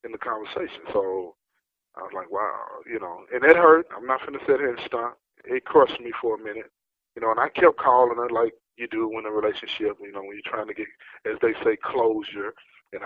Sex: male